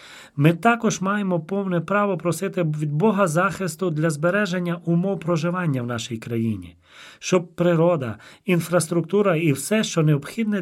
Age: 40-59